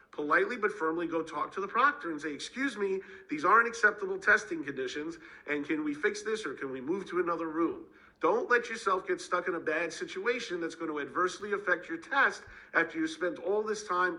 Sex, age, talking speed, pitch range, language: male, 50-69, 215 wpm, 155-205 Hz, English